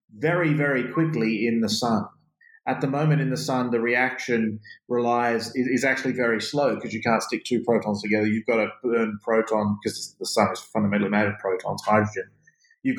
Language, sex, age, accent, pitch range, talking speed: English, male, 30-49, Australian, 115-155 Hz, 200 wpm